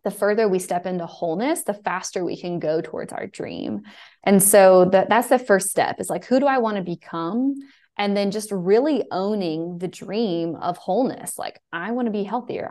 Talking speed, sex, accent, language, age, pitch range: 205 wpm, female, American, English, 20-39, 165-200 Hz